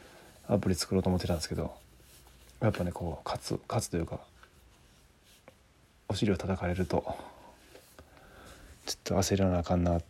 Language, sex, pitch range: Japanese, male, 85-105 Hz